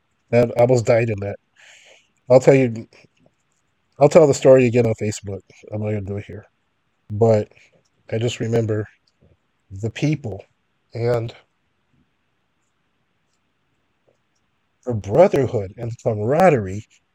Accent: American